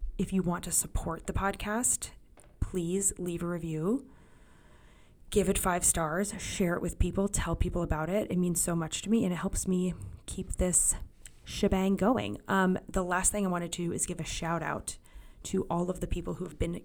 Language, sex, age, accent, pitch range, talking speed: English, female, 20-39, American, 165-190 Hz, 205 wpm